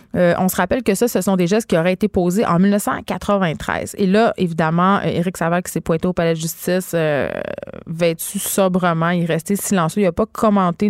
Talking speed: 215 wpm